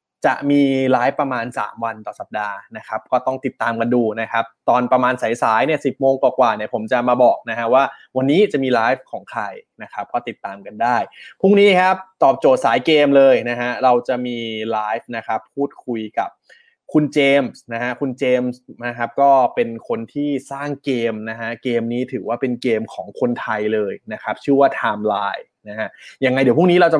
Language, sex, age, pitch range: Thai, male, 20-39, 120-150 Hz